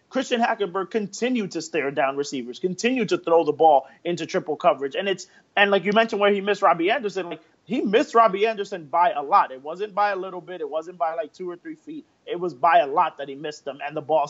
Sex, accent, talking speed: male, American, 260 wpm